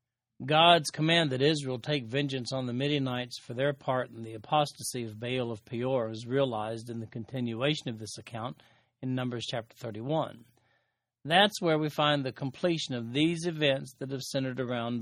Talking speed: 175 wpm